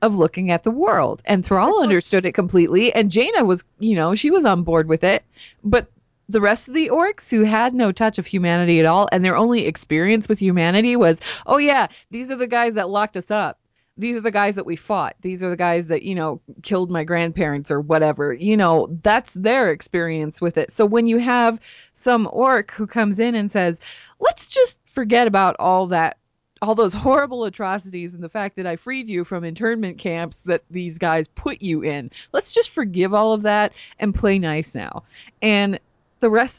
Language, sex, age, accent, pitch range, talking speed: English, female, 20-39, American, 170-230 Hz, 210 wpm